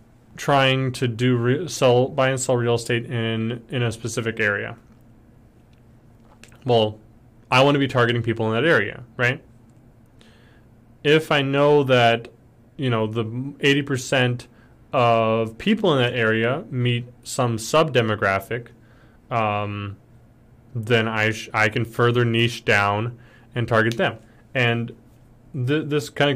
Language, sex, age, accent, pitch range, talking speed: English, male, 20-39, American, 115-130 Hz, 130 wpm